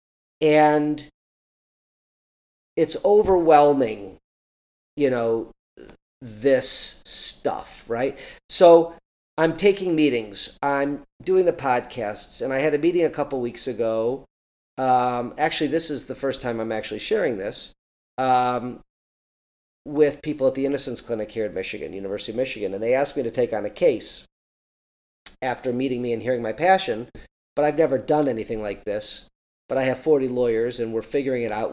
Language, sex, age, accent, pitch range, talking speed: English, male, 40-59, American, 115-150 Hz, 155 wpm